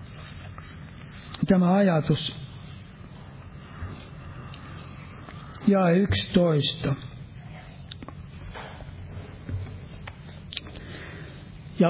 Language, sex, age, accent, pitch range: Finnish, male, 60-79, native, 150-190 Hz